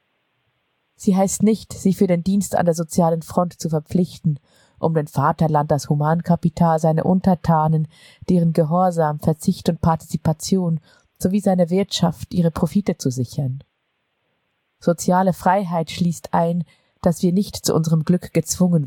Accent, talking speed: German, 135 wpm